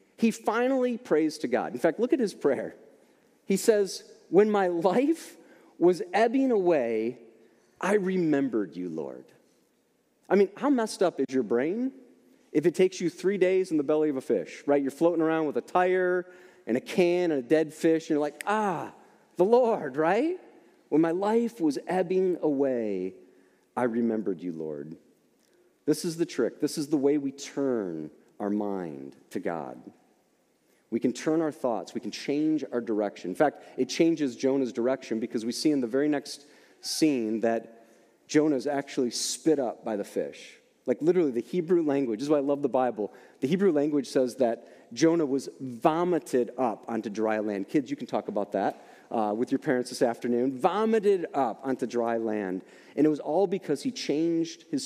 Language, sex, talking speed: English, male, 185 wpm